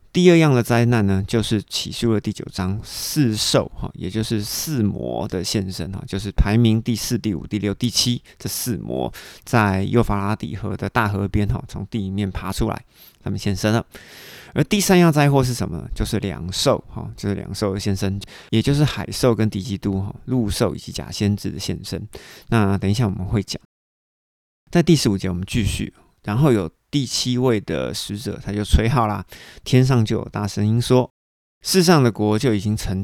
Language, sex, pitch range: Chinese, male, 100-120 Hz